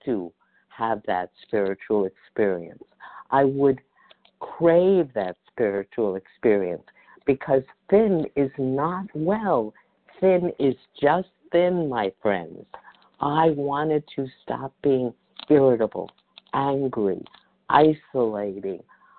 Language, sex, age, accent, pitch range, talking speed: English, female, 50-69, American, 120-155 Hz, 95 wpm